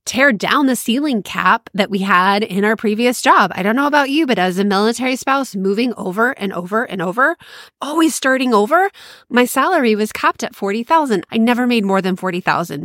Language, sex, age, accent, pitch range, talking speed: English, female, 20-39, American, 180-235 Hz, 200 wpm